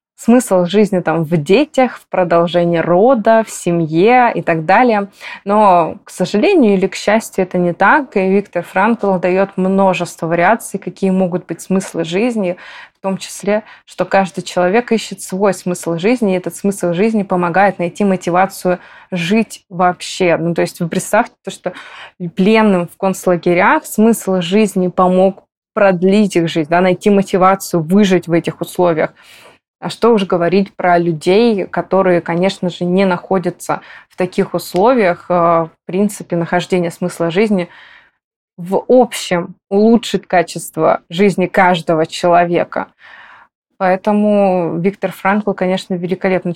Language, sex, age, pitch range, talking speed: Russian, female, 20-39, 175-200 Hz, 135 wpm